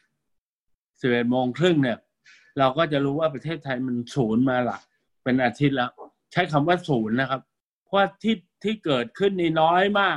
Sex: male